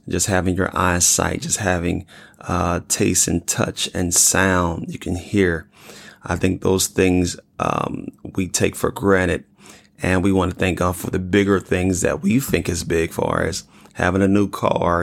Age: 30-49